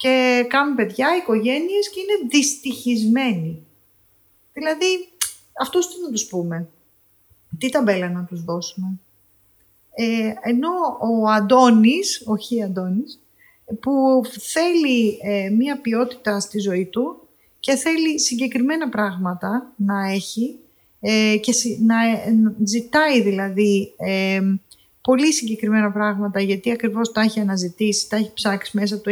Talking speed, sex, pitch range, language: 125 wpm, female, 200-270 Hz, Greek